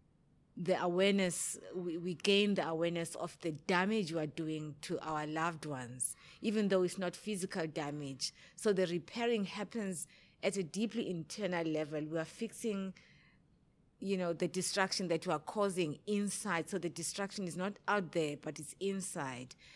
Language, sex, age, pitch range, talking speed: English, female, 30-49, 150-180 Hz, 165 wpm